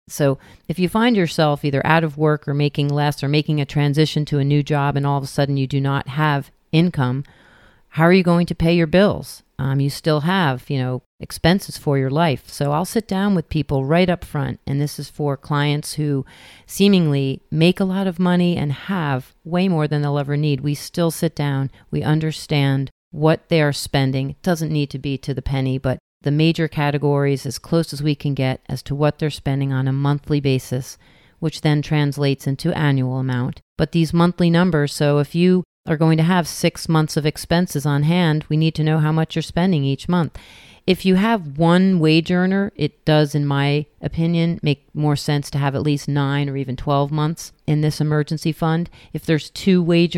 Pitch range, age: 140-165 Hz, 40-59